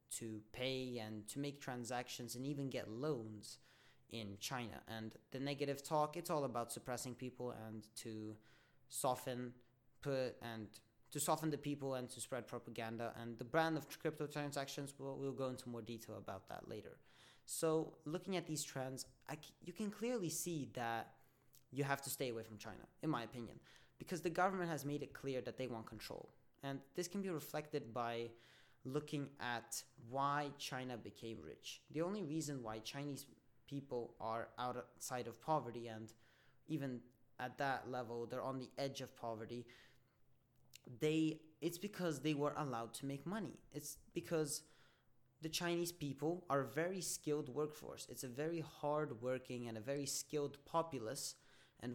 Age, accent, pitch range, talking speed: 20-39, Norwegian, 120-150 Hz, 165 wpm